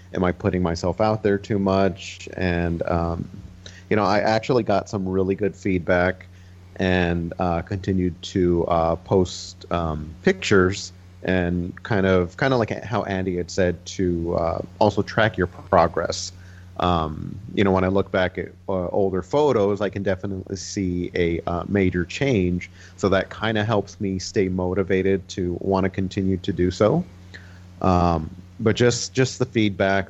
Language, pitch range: English, 90-100 Hz